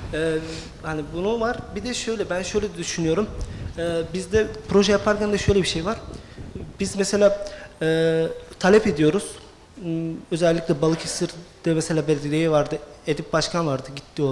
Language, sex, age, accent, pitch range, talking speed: Turkish, male, 40-59, native, 155-205 Hz, 145 wpm